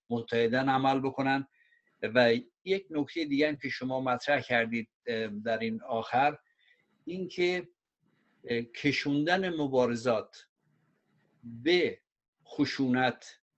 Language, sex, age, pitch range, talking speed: Persian, male, 60-79, 115-145 Hz, 85 wpm